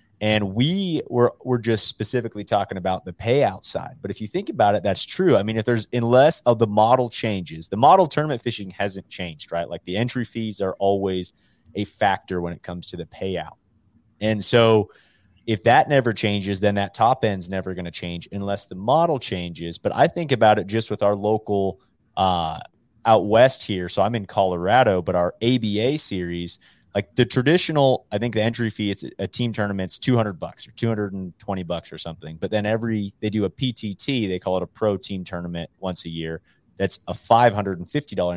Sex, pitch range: male, 95-120 Hz